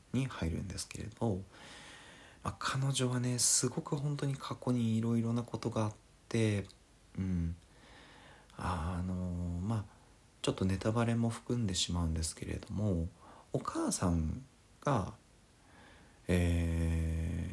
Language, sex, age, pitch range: Japanese, male, 40-59, 85-110 Hz